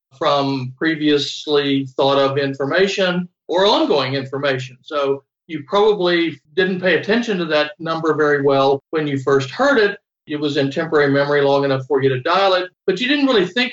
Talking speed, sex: 180 wpm, male